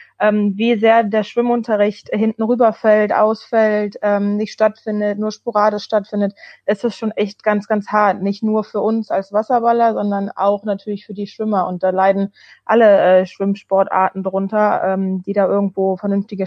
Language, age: German, 20-39